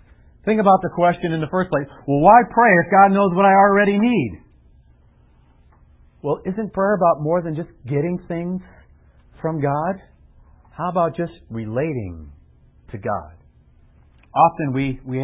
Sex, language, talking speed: male, English, 150 wpm